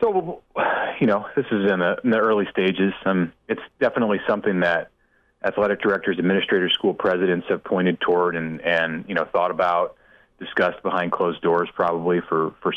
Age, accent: 30-49, American